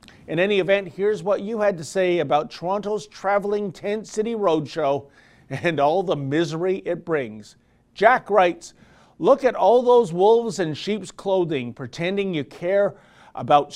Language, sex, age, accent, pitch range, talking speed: English, male, 40-59, American, 145-195 Hz, 155 wpm